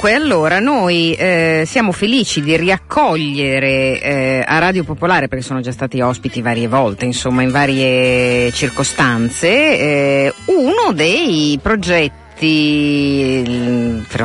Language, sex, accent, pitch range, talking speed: Italian, female, native, 130-185 Hz, 115 wpm